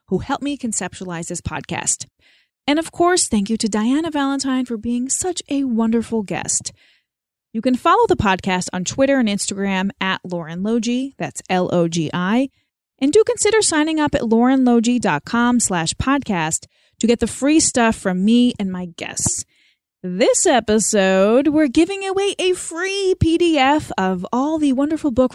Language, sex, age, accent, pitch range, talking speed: English, female, 30-49, American, 190-280 Hz, 150 wpm